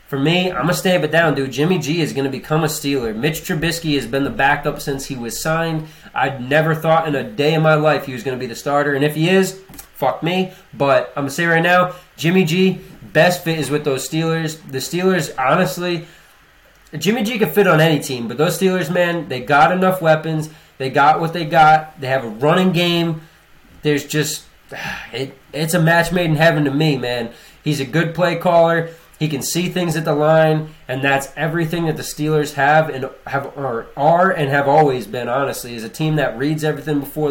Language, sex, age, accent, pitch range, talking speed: English, male, 20-39, American, 135-165 Hz, 215 wpm